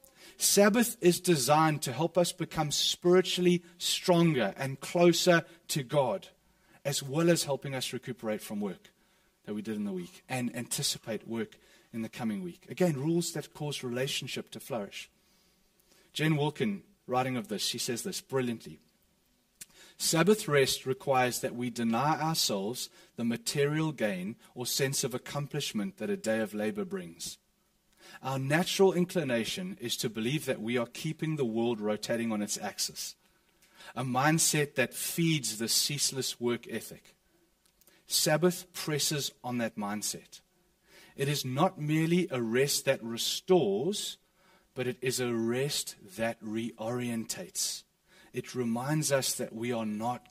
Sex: male